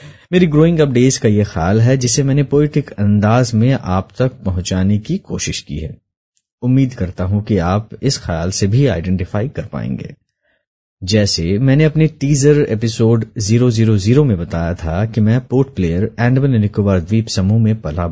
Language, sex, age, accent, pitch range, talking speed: Hindi, male, 30-49, native, 95-135 Hz, 165 wpm